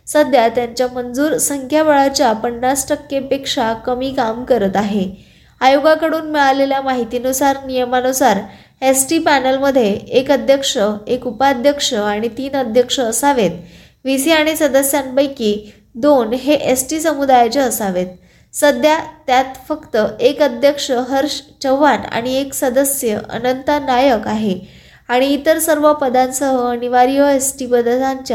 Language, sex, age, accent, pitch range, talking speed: Marathi, female, 20-39, native, 235-280 Hz, 115 wpm